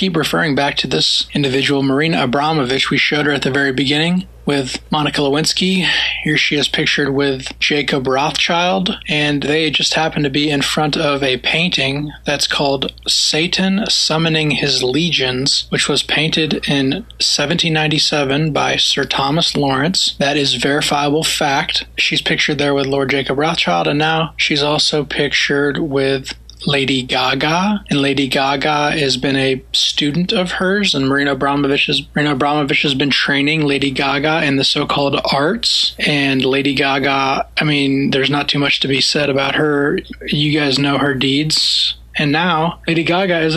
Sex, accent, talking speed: male, American, 160 wpm